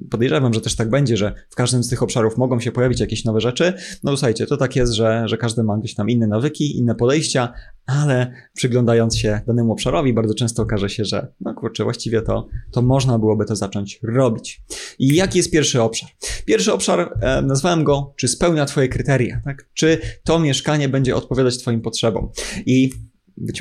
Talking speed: 195 wpm